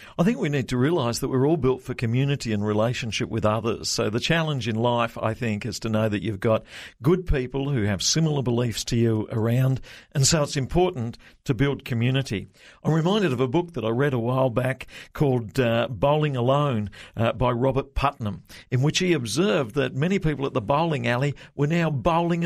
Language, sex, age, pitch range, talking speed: English, male, 50-69, 120-165 Hz, 210 wpm